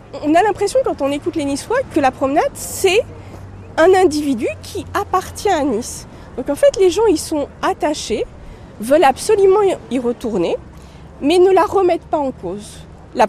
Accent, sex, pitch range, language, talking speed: French, female, 255-330 Hz, French, 170 wpm